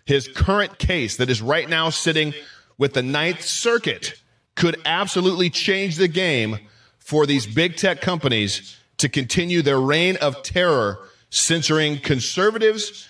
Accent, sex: American, male